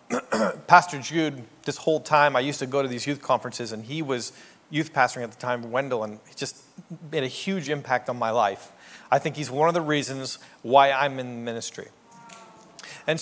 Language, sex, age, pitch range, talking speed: English, male, 40-59, 125-165 Hz, 200 wpm